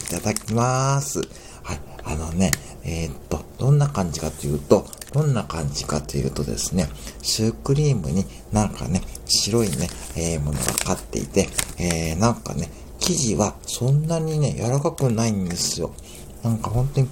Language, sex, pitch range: Japanese, male, 70-110 Hz